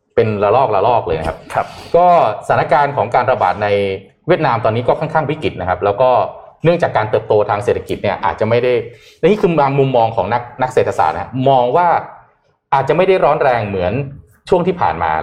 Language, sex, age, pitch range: Thai, male, 20-39, 115-185 Hz